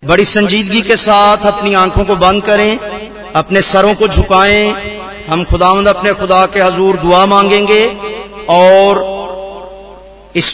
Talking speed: 130 wpm